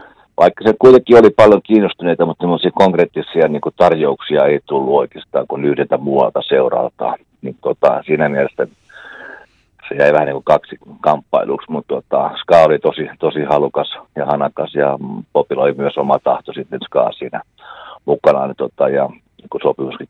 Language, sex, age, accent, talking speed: Finnish, male, 50-69, native, 150 wpm